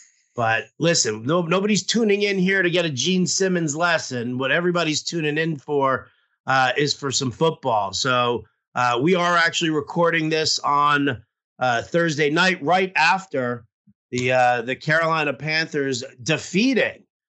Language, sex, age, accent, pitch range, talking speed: English, male, 40-59, American, 130-165 Hz, 145 wpm